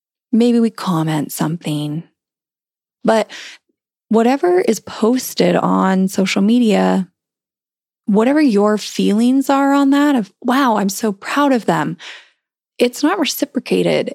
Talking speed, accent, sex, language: 115 wpm, American, female, English